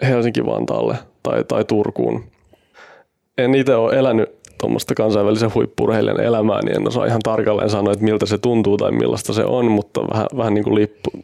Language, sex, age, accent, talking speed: Finnish, male, 20-39, native, 170 wpm